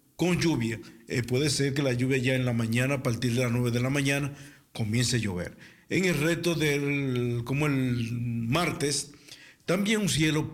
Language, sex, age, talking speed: Dutch, male, 50-69, 190 wpm